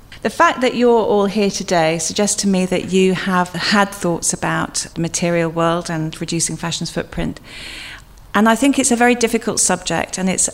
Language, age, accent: English, 40-59, British